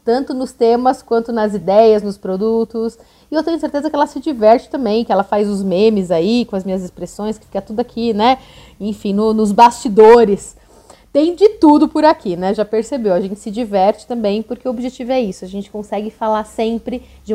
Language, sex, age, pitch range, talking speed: Portuguese, female, 30-49, 210-275 Hz, 205 wpm